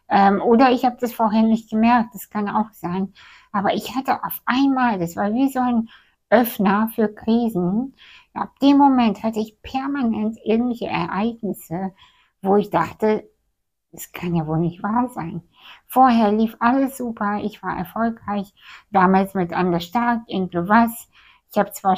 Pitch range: 190-230 Hz